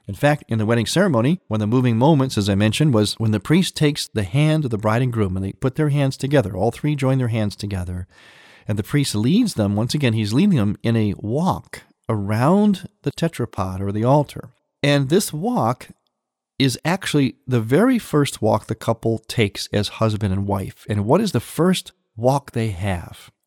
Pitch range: 105-150 Hz